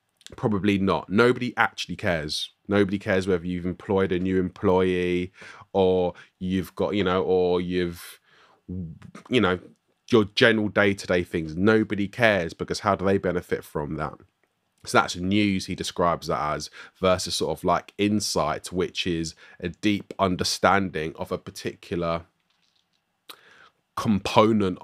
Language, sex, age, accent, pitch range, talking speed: English, male, 20-39, British, 85-95 Hz, 135 wpm